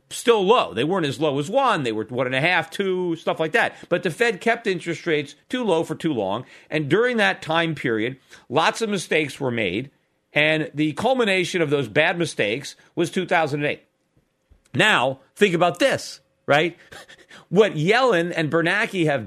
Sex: male